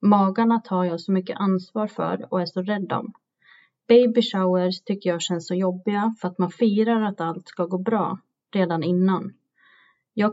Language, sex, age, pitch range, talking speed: Swedish, female, 30-49, 180-215 Hz, 180 wpm